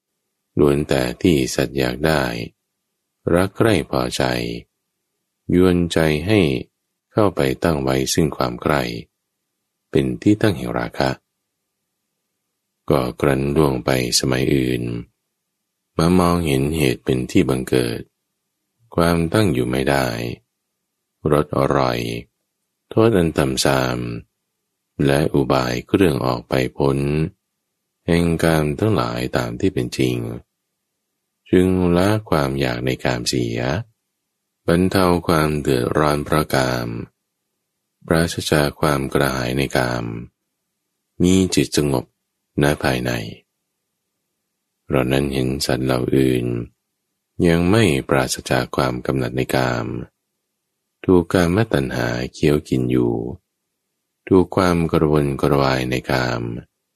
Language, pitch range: English, 65-85 Hz